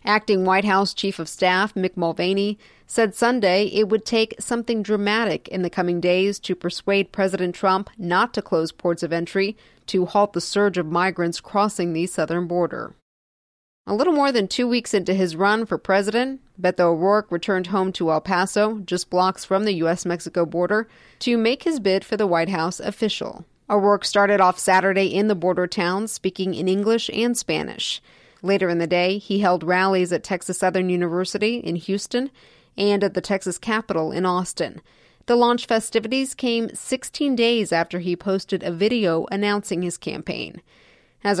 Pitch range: 180-215 Hz